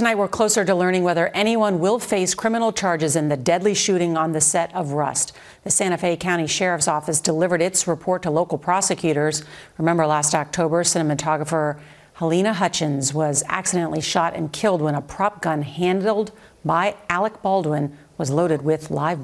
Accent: American